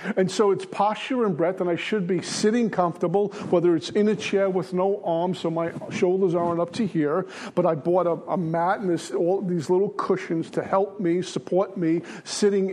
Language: English